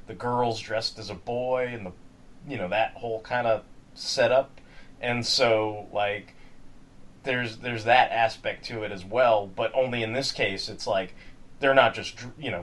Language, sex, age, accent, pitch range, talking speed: English, male, 30-49, American, 100-130 Hz, 180 wpm